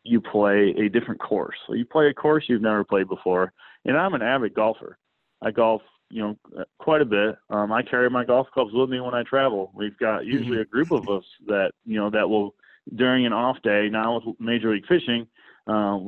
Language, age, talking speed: English, 30-49, 220 wpm